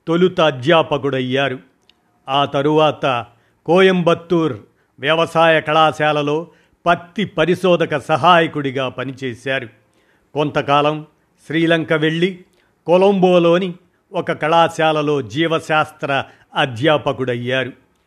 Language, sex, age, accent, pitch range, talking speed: Telugu, male, 50-69, native, 135-170 Hz, 65 wpm